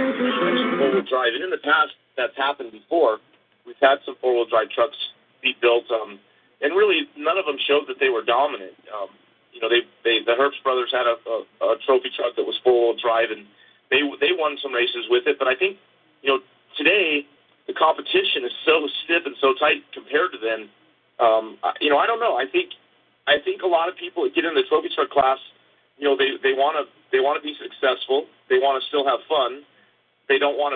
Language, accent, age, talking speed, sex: English, American, 40-59, 215 wpm, male